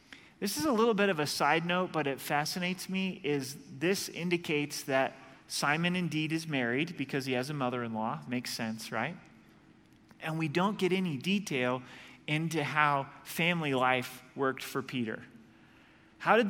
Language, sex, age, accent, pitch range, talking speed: English, male, 30-49, American, 145-185 Hz, 160 wpm